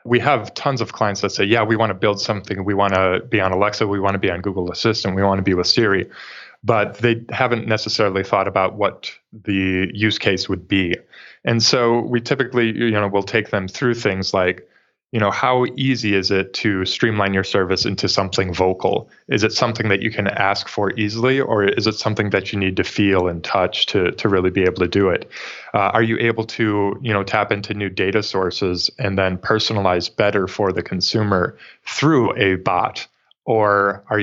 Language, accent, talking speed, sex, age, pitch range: English, American, 210 wpm, male, 20-39, 95-110 Hz